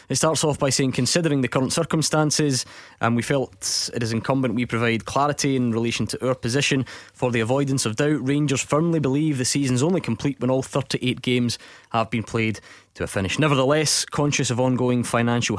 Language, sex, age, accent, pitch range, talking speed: English, male, 20-39, British, 115-140 Hz, 195 wpm